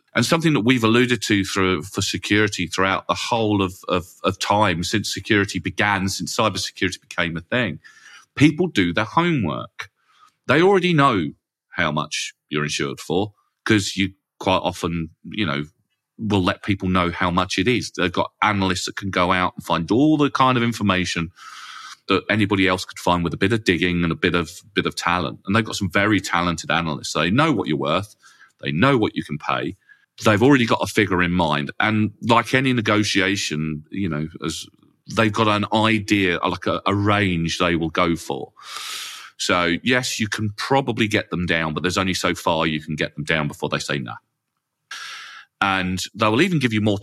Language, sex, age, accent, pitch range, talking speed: English, male, 40-59, British, 90-110 Hz, 195 wpm